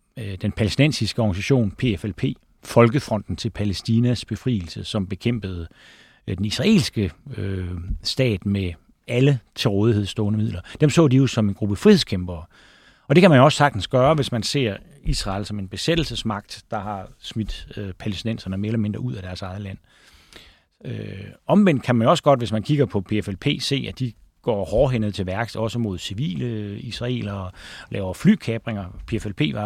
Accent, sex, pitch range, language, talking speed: native, male, 100-130 Hz, Danish, 160 wpm